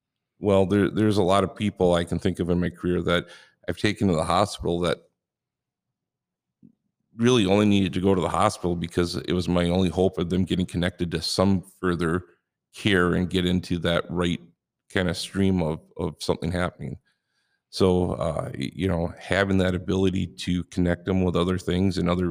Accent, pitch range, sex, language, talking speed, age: American, 90-95 Hz, male, English, 190 wpm, 50-69